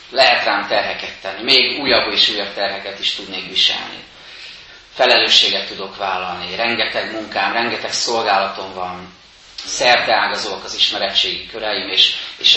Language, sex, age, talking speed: Hungarian, male, 30-49, 125 wpm